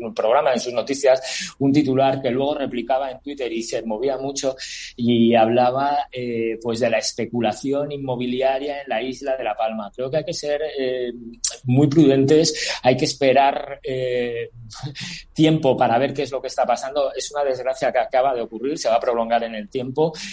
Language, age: Spanish, 30-49